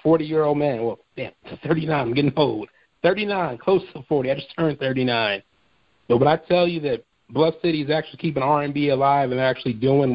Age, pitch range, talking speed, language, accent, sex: 40-59, 125-150 Hz, 185 wpm, English, American, male